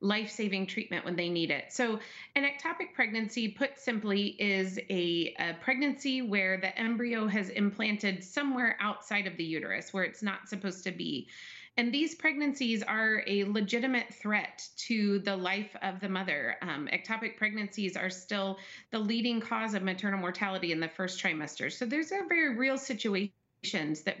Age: 30-49